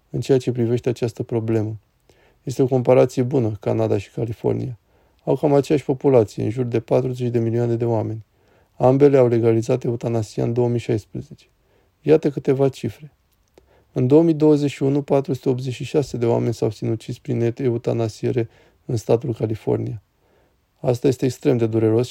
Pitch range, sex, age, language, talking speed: 115-135 Hz, male, 20-39, Romanian, 140 wpm